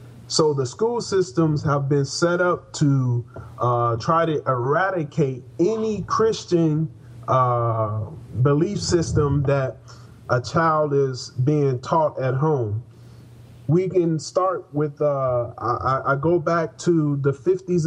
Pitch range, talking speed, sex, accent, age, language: 125-165 Hz, 130 wpm, male, American, 30-49, English